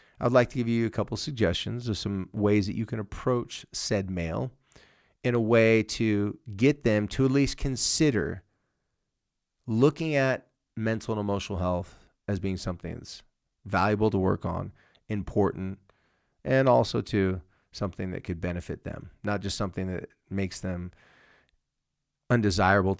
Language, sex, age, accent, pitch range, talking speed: English, male, 30-49, American, 95-115 Hz, 150 wpm